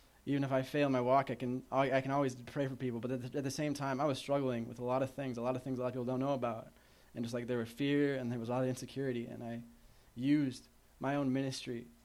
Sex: male